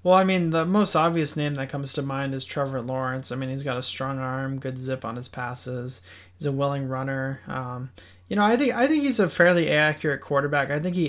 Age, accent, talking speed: 20-39, American, 245 wpm